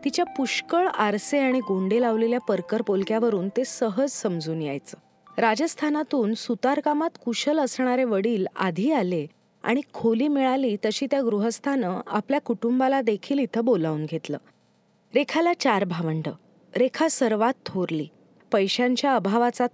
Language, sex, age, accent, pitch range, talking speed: Marathi, female, 30-49, native, 200-265 Hz, 120 wpm